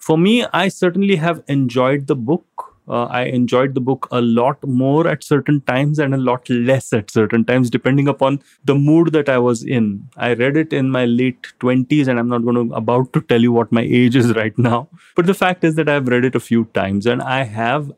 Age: 30-49